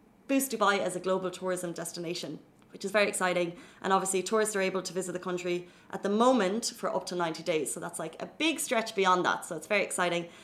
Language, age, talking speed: Arabic, 30-49, 230 wpm